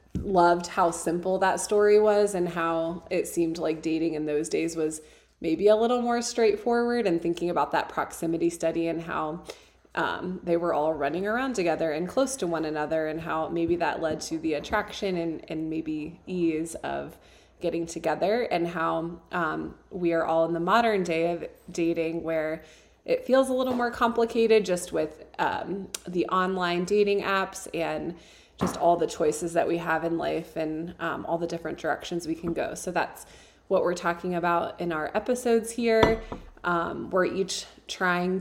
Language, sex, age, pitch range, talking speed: English, female, 20-39, 165-195 Hz, 180 wpm